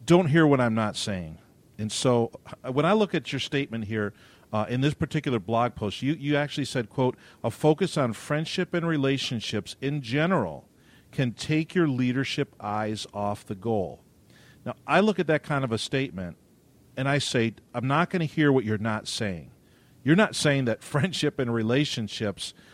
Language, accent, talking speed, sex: English, American, 185 wpm, male